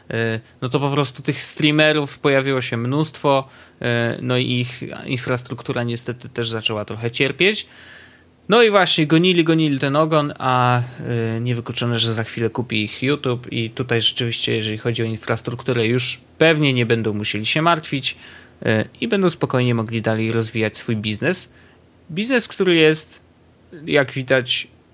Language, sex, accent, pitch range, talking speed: Polish, male, native, 115-150 Hz, 145 wpm